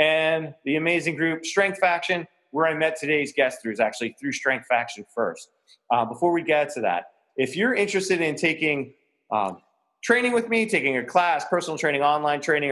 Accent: American